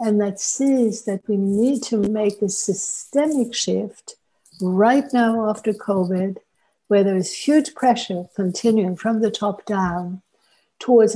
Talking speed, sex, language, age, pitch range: 140 wpm, female, English, 60-79, 195-240 Hz